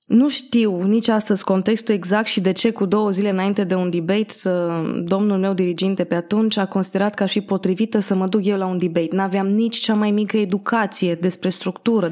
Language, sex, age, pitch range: Romanian, female, 20-39, 190-230 Hz